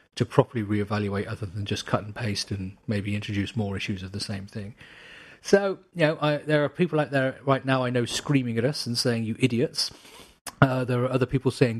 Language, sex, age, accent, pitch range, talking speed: English, male, 40-59, British, 105-130 Hz, 225 wpm